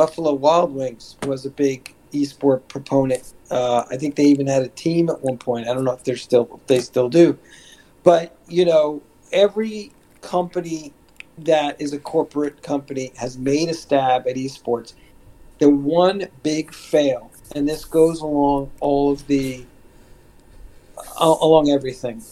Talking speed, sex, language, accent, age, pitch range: 155 wpm, male, English, American, 50-69, 125-150 Hz